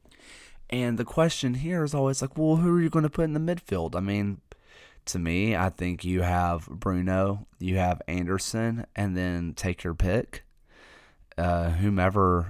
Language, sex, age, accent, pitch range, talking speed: English, male, 20-39, American, 85-100 Hz, 175 wpm